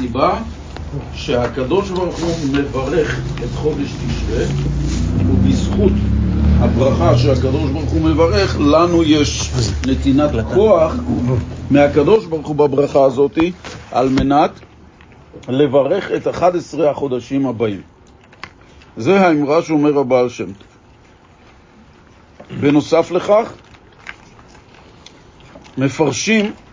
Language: Hebrew